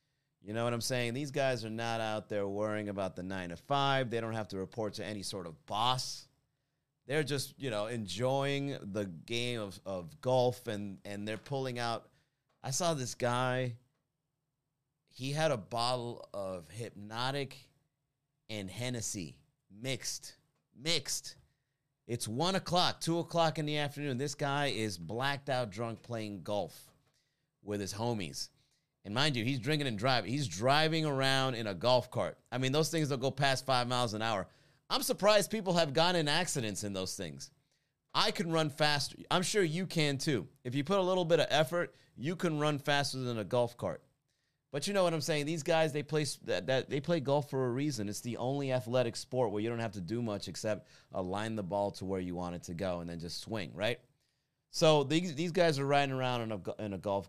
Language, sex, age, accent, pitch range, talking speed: English, male, 30-49, American, 115-145 Hz, 195 wpm